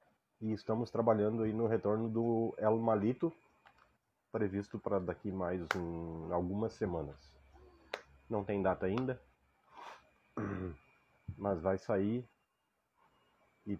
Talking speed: 105 wpm